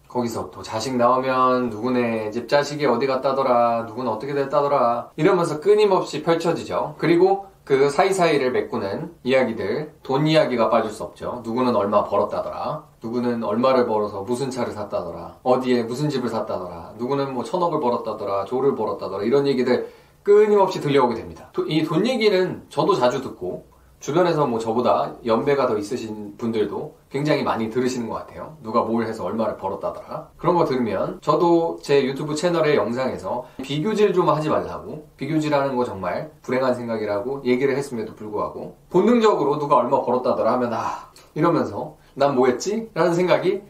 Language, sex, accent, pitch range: Korean, male, native, 120-165 Hz